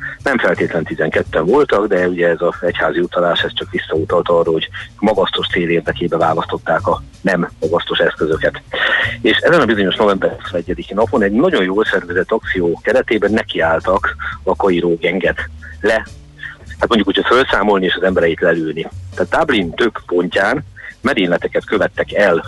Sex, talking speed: male, 150 wpm